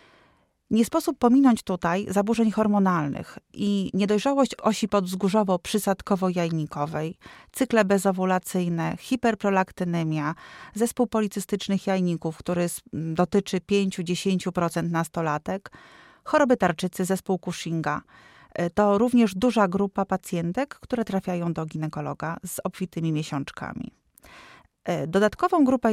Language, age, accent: Polish, 30-49, native